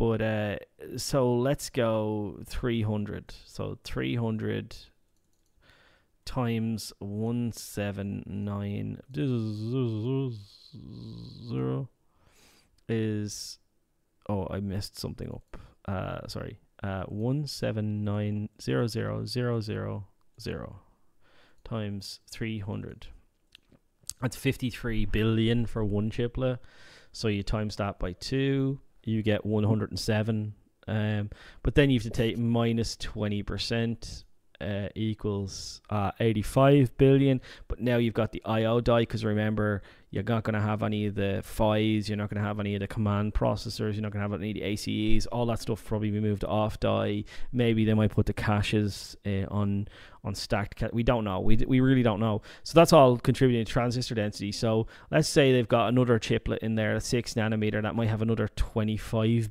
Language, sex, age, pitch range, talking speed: English, male, 20-39, 100-115 Hz, 155 wpm